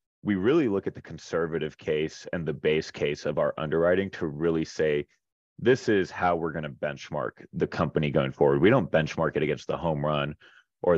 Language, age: English, 30-49